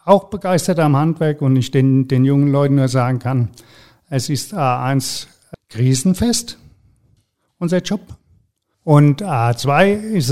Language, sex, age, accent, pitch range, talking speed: German, male, 50-69, German, 120-145 Hz, 120 wpm